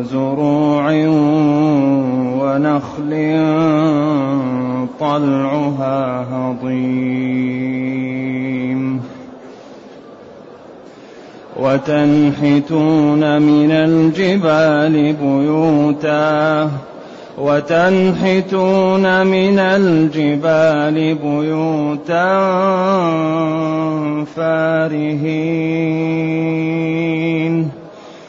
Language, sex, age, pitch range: Arabic, male, 30-49, 140-160 Hz